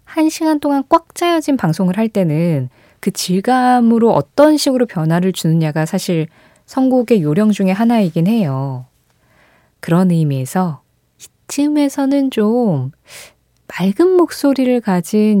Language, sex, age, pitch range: Korean, female, 20-39, 150-245 Hz